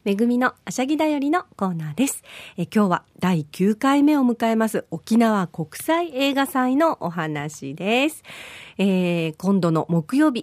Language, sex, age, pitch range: Japanese, female, 40-59, 160-260 Hz